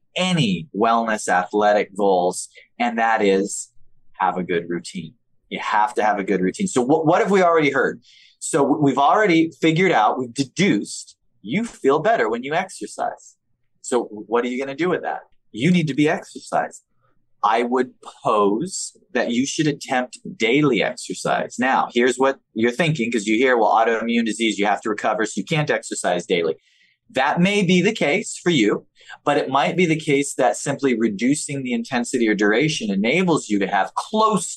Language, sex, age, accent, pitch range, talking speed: English, male, 30-49, American, 115-160 Hz, 185 wpm